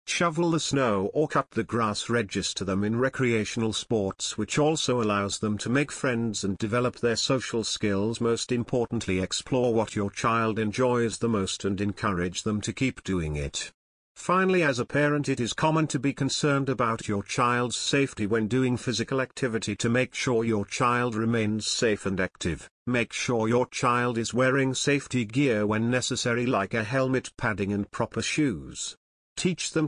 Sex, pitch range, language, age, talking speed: male, 110-135 Hz, English, 50-69, 175 wpm